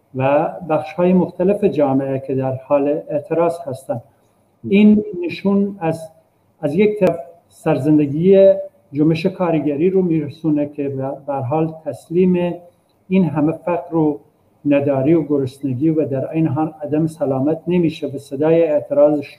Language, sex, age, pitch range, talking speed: Persian, male, 50-69, 140-165 Hz, 130 wpm